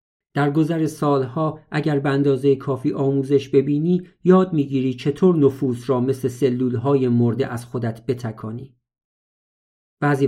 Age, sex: 50-69, male